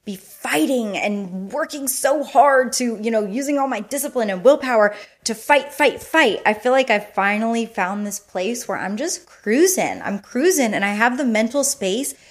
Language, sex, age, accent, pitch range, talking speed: English, female, 30-49, American, 205-280 Hz, 190 wpm